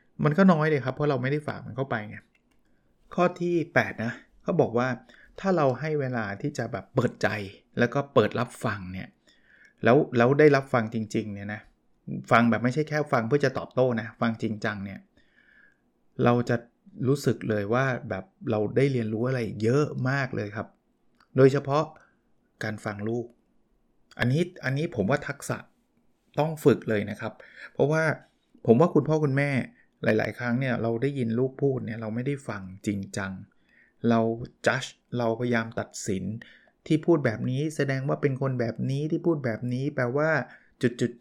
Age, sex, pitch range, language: 20-39, male, 115-145 Hz, Thai